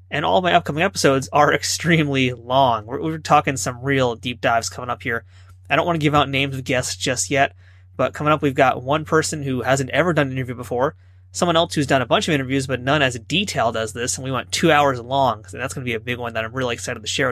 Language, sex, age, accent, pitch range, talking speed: English, male, 30-49, American, 120-160 Hz, 265 wpm